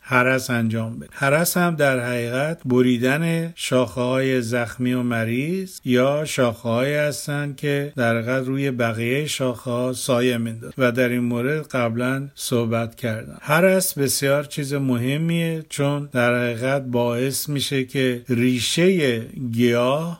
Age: 50-69